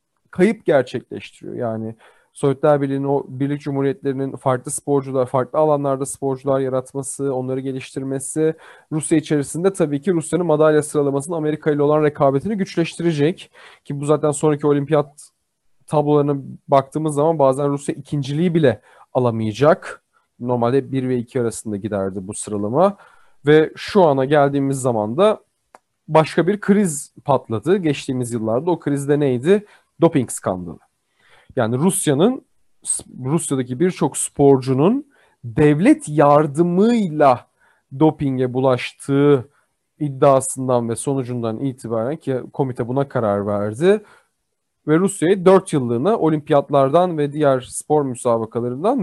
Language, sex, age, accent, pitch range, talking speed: Turkish, male, 30-49, native, 130-160 Hz, 115 wpm